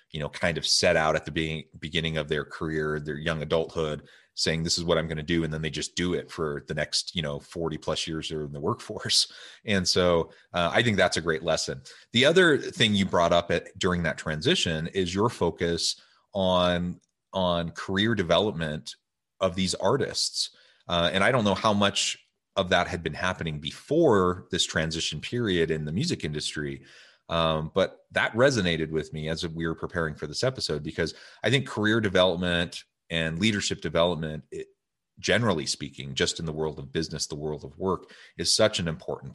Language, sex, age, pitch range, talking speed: English, male, 30-49, 80-90 Hz, 195 wpm